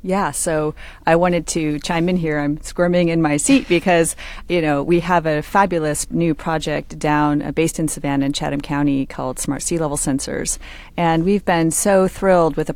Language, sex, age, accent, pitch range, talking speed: English, female, 30-49, American, 150-180 Hz, 200 wpm